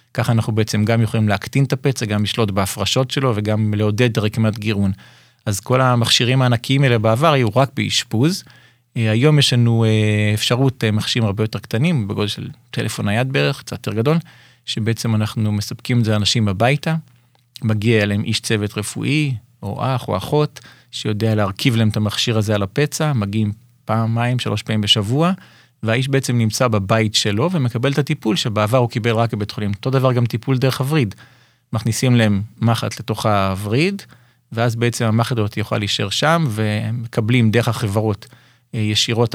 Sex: male